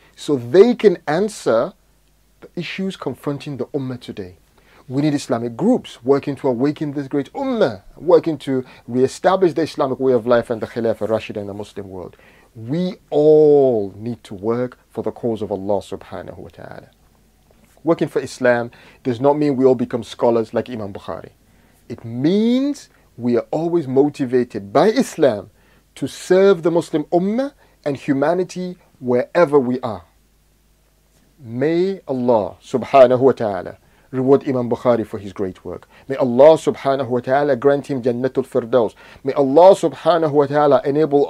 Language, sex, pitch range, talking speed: English, male, 115-155 Hz, 155 wpm